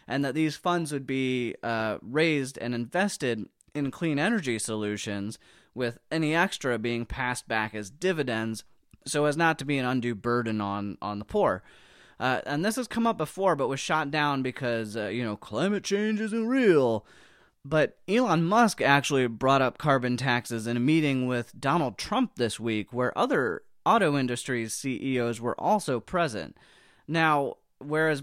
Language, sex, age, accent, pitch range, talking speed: English, male, 20-39, American, 115-160 Hz, 170 wpm